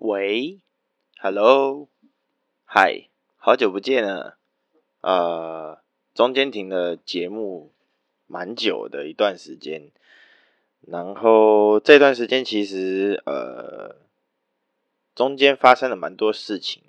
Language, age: Chinese, 20-39